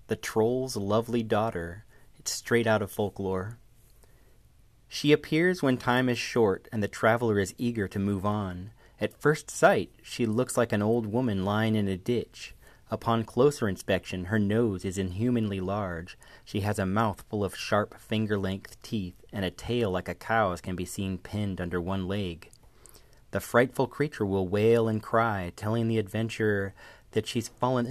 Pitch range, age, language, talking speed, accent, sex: 95-120 Hz, 30-49, English, 170 wpm, American, male